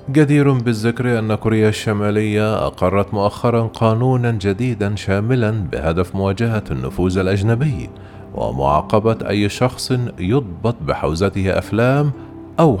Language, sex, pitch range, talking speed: Arabic, male, 90-115 Hz, 100 wpm